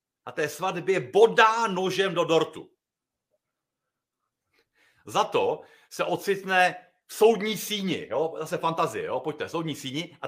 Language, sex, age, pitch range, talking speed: Slovak, male, 40-59, 160-225 Hz, 140 wpm